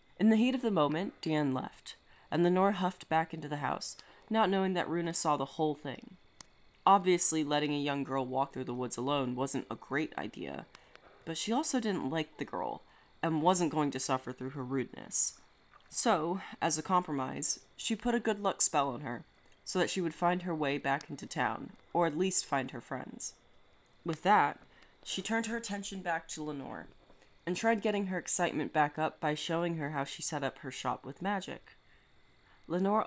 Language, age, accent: English, 30-49, American